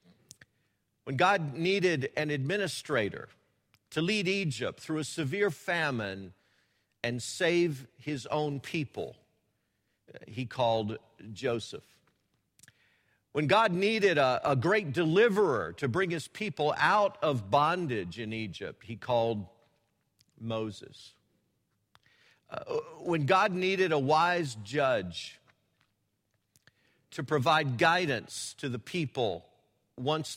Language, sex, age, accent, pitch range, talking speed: English, male, 50-69, American, 110-165 Hz, 105 wpm